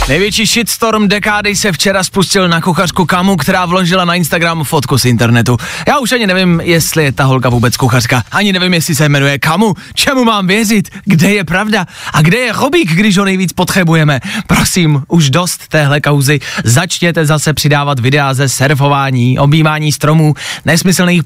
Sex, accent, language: male, native, Czech